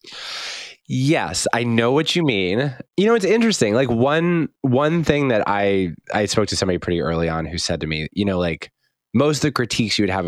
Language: English